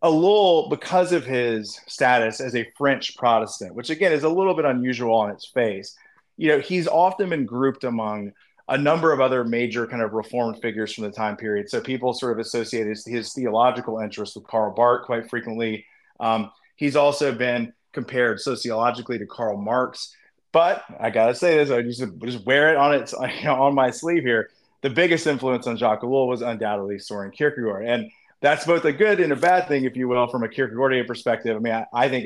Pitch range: 115-135 Hz